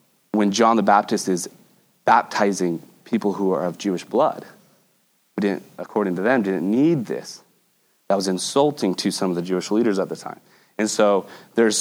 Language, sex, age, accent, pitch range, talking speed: English, male, 30-49, American, 105-135 Hz, 180 wpm